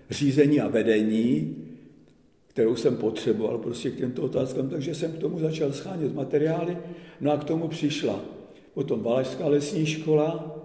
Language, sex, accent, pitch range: Czech, male, native, 125-145 Hz